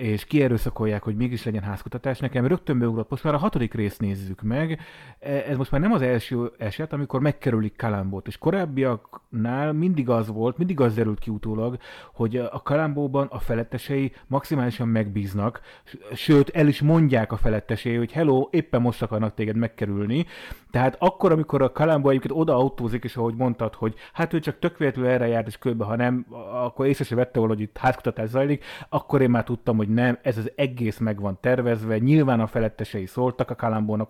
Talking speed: 180 wpm